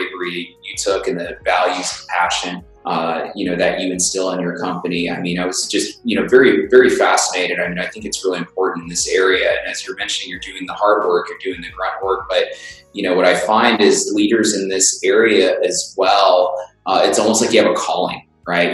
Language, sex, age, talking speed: English, male, 20-39, 235 wpm